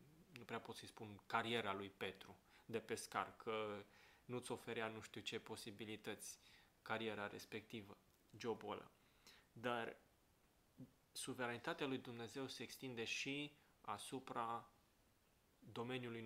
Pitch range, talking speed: 110-125 Hz, 110 wpm